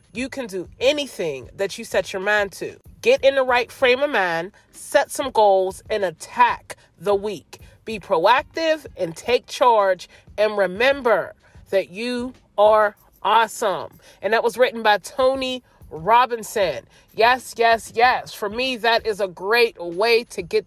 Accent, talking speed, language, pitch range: American, 155 wpm, English, 205-250 Hz